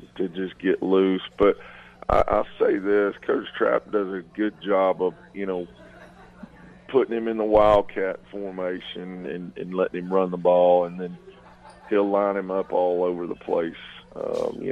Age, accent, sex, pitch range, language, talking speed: 40-59, American, male, 90-105 Hz, English, 175 wpm